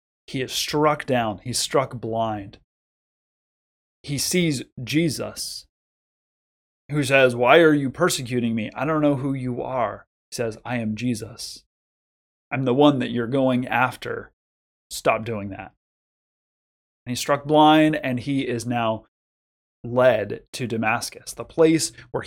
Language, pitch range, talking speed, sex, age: English, 110-135 Hz, 140 wpm, male, 30-49